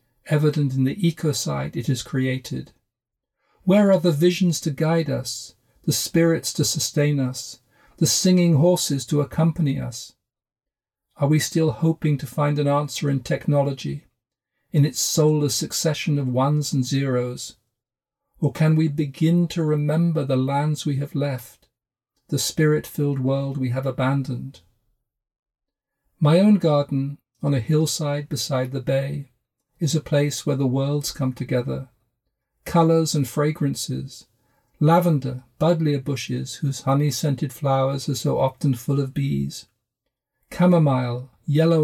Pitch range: 130-160 Hz